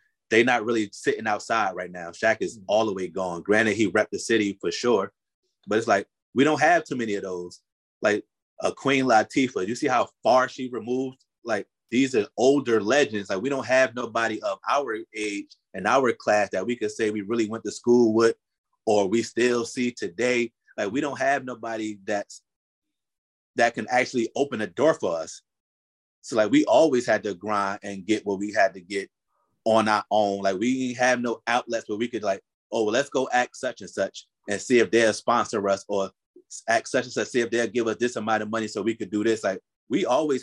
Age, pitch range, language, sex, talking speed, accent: 30-49, 105-125 Hz, English, male, 220 wpm, American